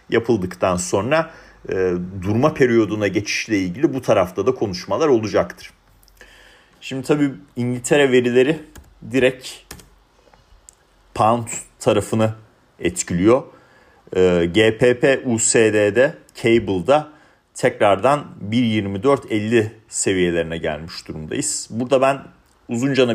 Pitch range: 105-125 Hz